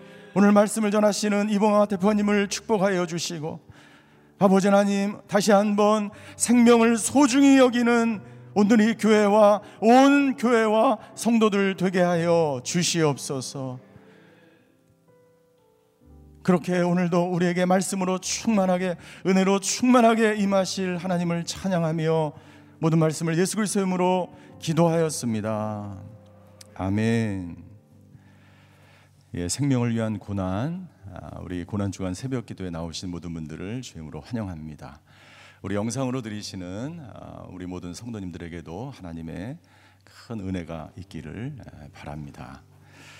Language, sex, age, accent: Korean, male, 40-59, native